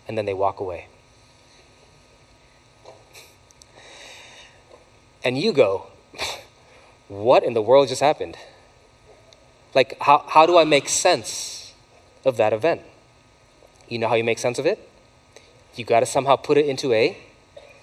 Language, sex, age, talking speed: English, male, 20-39, 130 wpm